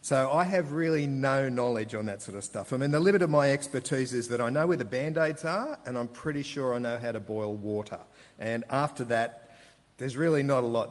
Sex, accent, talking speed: male, Australian, 240 wpm